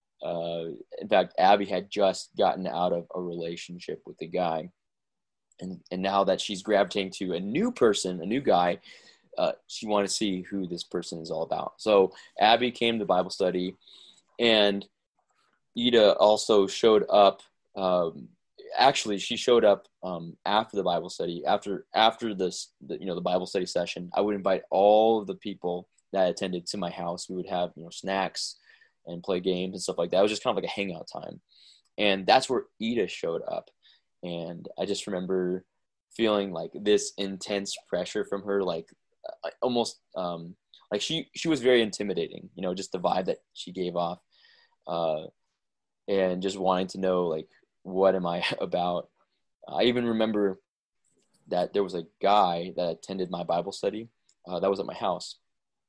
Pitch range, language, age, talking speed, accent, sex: 90-105 Hz, English, 20-39, 180 wpm, American, male